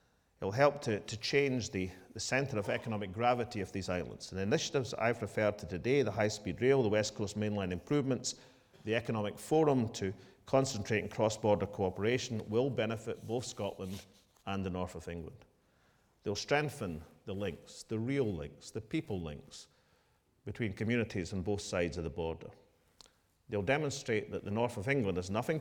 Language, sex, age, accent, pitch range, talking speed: English, male, 40-59, British, 95-120 Hz, 175 wpm